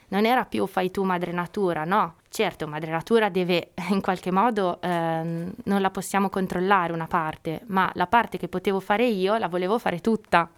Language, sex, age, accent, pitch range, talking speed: Italian, female, 20-39, native, 170-200 Hz, 185 wpm